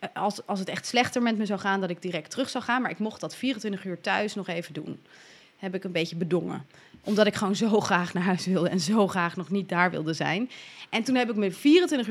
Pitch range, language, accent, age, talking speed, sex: 180-225 Hz, Dutch, Dutch, 30-49, 260 wpm, female